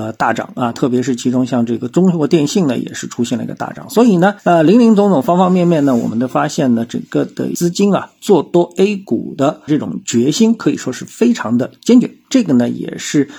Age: 50-69